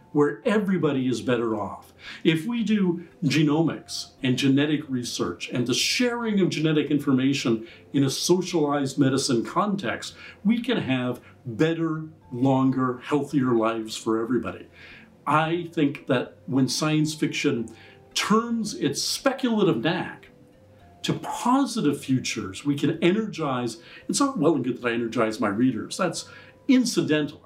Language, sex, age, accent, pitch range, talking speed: English, male, 50-69, American, 125-175 Hz, 130 wpm